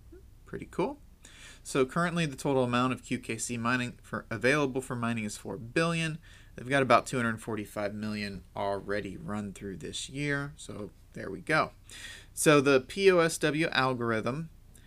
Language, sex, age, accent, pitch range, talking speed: English, male, 30-49, American, 105-135 Hz, 140 wpm